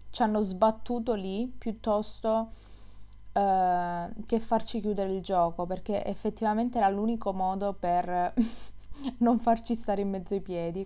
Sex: female